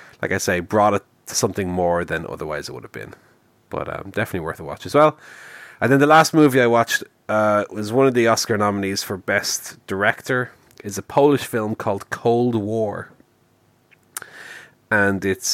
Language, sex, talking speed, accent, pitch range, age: English, male, 185 wpm, Irish, 90-120 Hz, 30-49